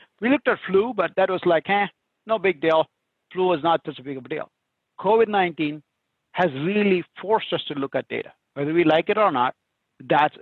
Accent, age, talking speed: Indian, 50-69, 200 wpm